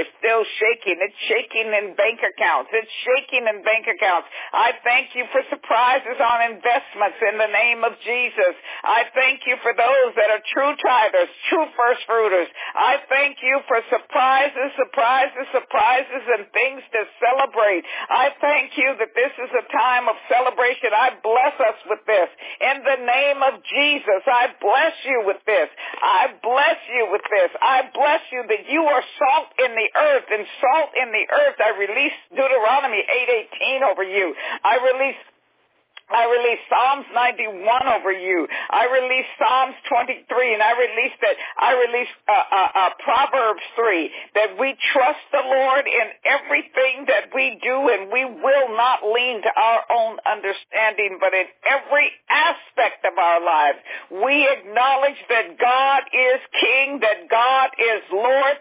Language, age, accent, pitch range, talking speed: English, 60-79, American, 225-270 Hz, 160 wpm